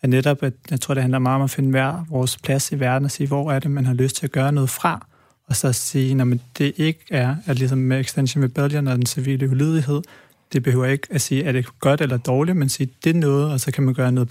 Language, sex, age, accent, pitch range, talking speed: Danish, male, 30-49, native, 130-145 Hz, 265 wpm